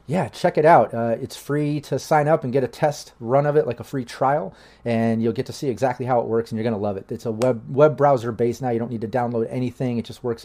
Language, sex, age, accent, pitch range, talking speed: English, male, 30-49, American, 115-145 Hz, 300 wpm